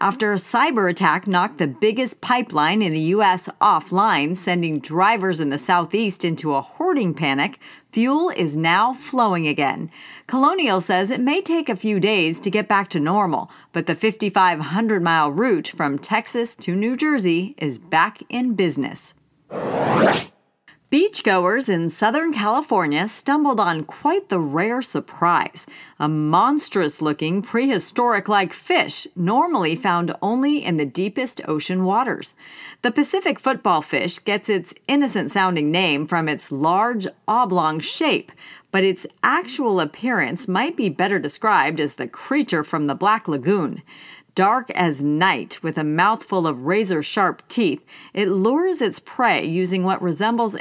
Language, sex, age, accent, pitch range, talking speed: English, female, 40-59, American, 170-245 Hz, 140 wpm